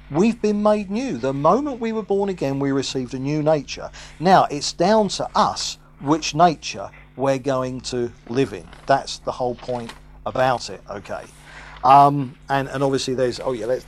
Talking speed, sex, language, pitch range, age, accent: 180 wpm, male, English, 125-170 Hz, 50-69, British